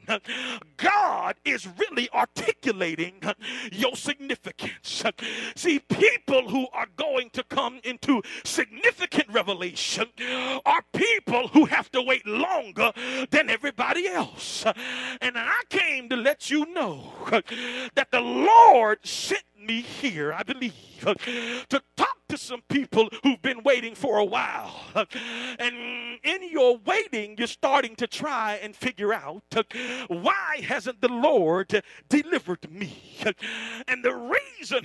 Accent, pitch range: American, 230-280 Hz